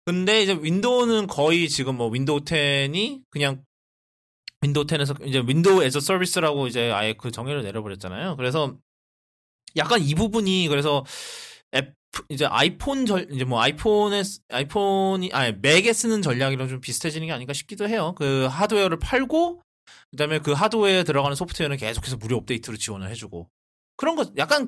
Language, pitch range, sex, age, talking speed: English, 130-200 Hz, male, 20-39, 145 wpm